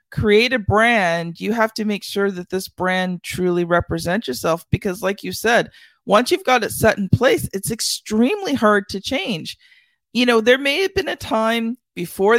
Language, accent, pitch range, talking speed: English, American, 185-240 Hz, 190 wpm